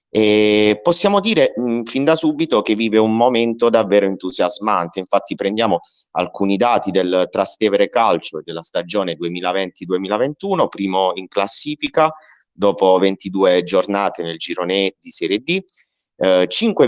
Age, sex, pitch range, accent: 30-49, male, 95-130 Hz, native